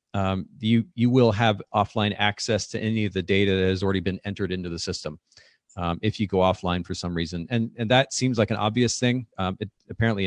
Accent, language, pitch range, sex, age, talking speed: American, English, 95-110 Hz, male, 40-59, 230 wpm